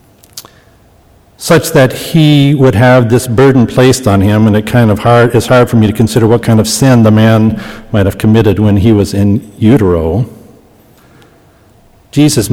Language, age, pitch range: English, 60-79, 110-140 Hz